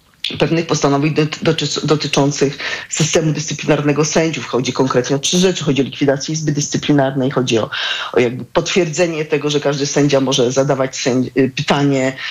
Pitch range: 140-175 Hz